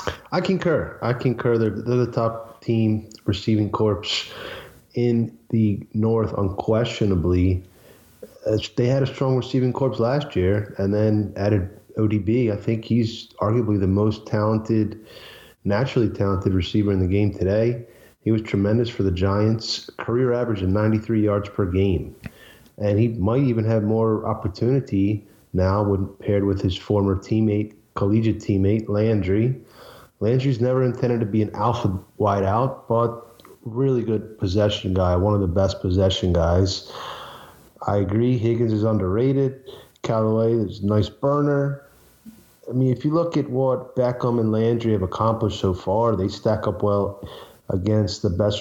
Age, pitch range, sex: 30-49, 100-115 Hz, male